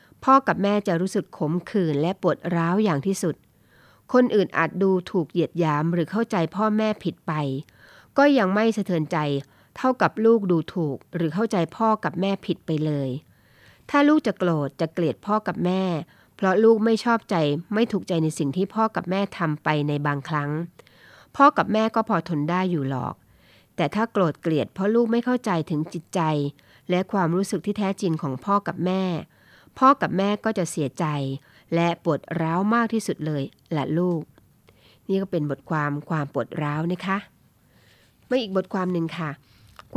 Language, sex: Thai, female